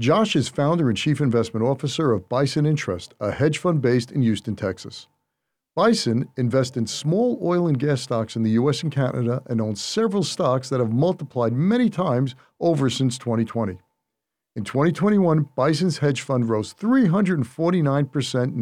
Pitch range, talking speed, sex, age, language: 115-155 Hz, 160 wpm, male, 50-69, English